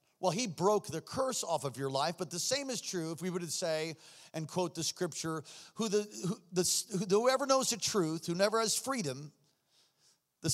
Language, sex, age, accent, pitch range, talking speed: English, male, 40-59, American, 180-230 Hz, 180 wpm